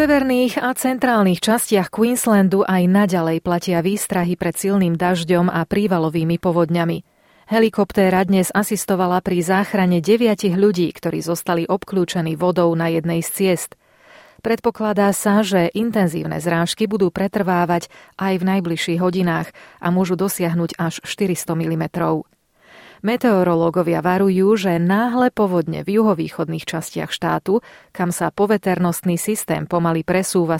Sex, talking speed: female, 125 wpm